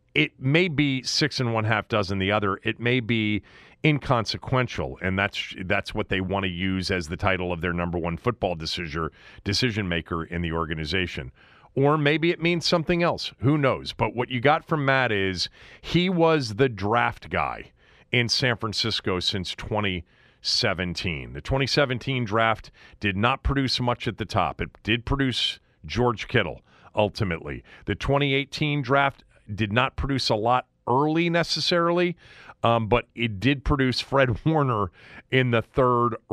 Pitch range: 95-130 Hz